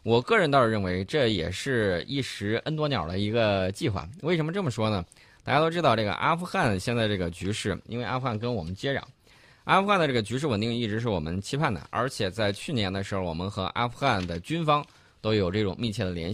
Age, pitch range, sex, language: 20-39, 95-130 Hz, male, Chinese